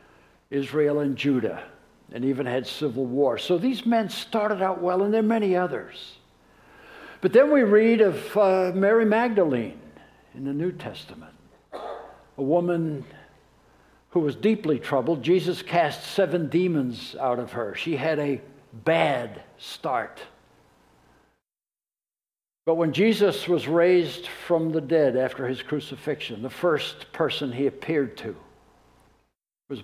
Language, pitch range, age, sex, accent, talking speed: English, 140-185 Hz, 60-79, male, American, 135 wpm